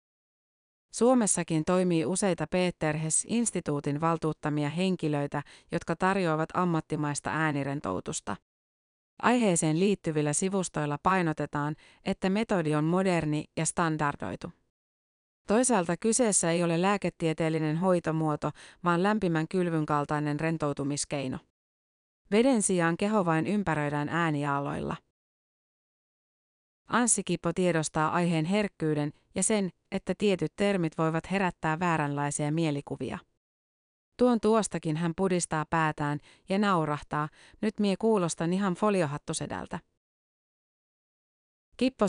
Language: Finnish